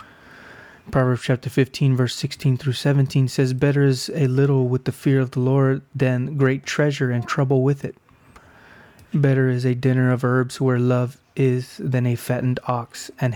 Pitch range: 125-140 Hz